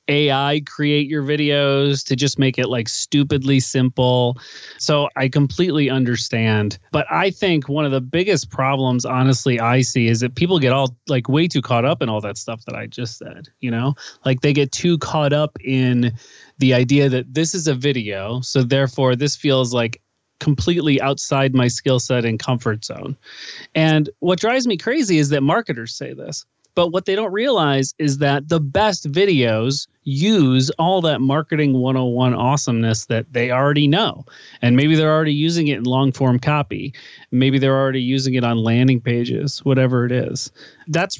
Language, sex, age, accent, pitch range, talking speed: English, male, 30-49, American, 125-150 Hz, 180 wpm